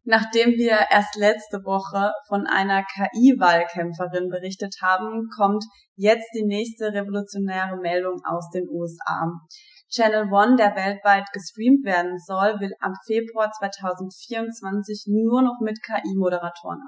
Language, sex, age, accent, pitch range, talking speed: German, female, 20-39, German, 180-215 Hz, 120 wpm